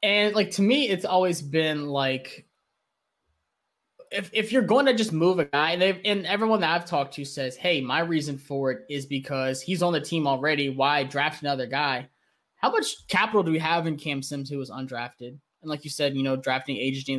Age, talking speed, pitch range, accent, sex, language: 10-29, 215 wpm, 135-185 Hz, American, male, English